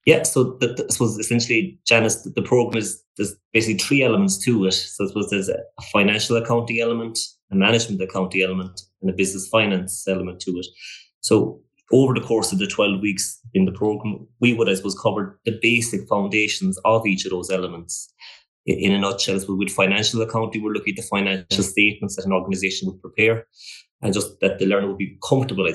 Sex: male